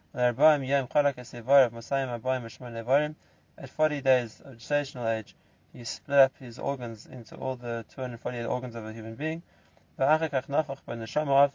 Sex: male